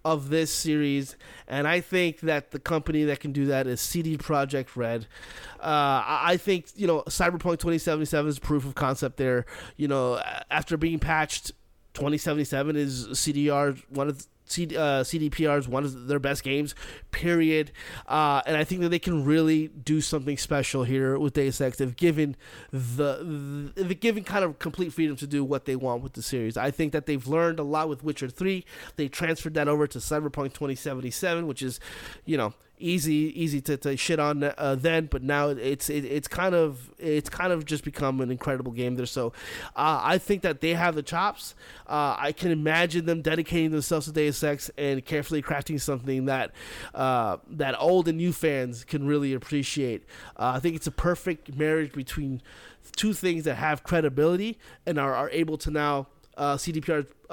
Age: 30-49